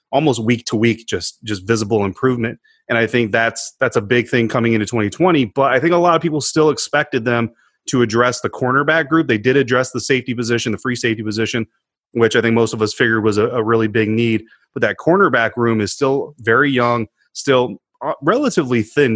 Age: 30-49